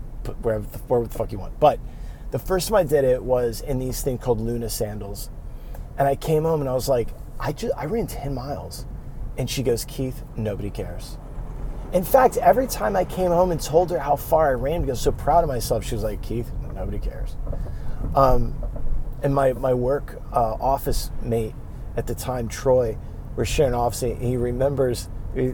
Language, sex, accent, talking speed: English, male, American, 205 wpm